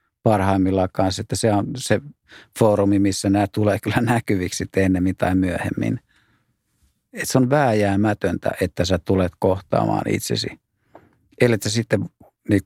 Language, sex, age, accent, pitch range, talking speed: Finnish, male, 50-69, native, 90-105 Hz, 135 wpm